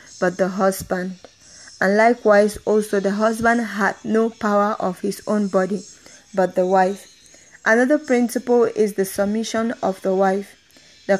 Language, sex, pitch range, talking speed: English, female, 195-220 Hz, 145 wpm